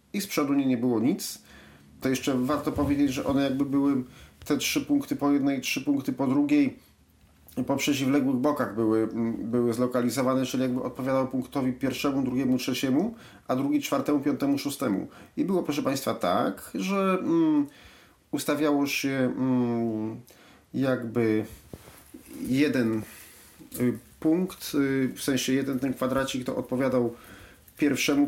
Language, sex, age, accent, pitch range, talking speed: Polish, male, 40-59, native, 125-175 Hz, 130 wpm